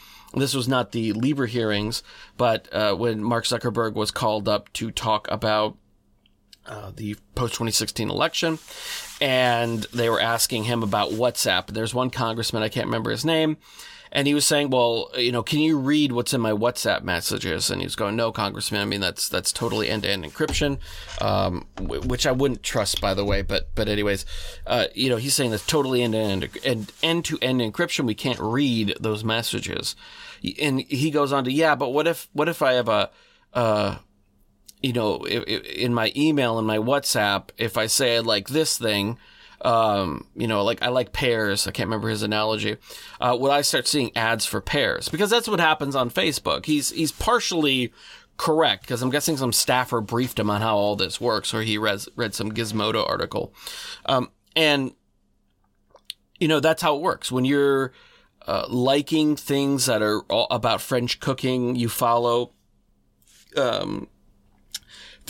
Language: English